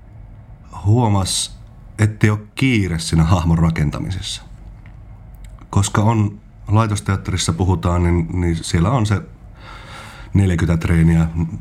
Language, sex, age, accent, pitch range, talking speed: English, male, 30-49, Finnish, 80-105 Hz, 95 wpm